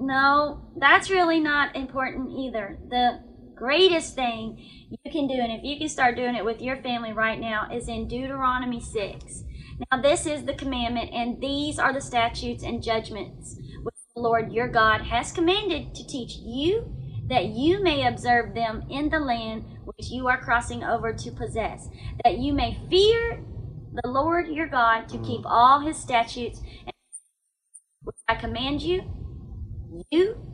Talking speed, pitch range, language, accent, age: 165 wpm, 230-295 Hz, English, American, 30-49